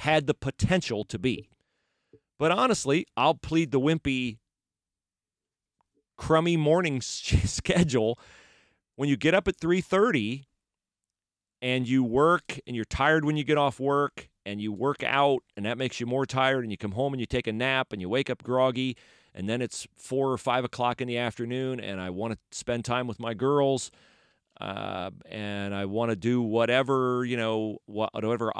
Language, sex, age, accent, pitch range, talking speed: English, male, 40-59, American, 110-135 Hz, 175 wpm